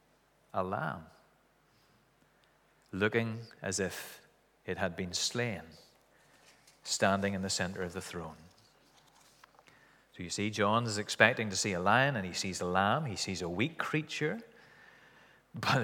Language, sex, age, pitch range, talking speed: English, male, 30-49, 100-145 Hz, 140 wpm